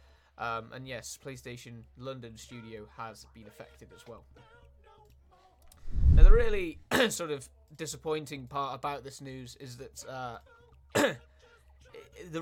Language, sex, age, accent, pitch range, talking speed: Italian, male, 20-39, British, 125-155 Hz, 120 wpm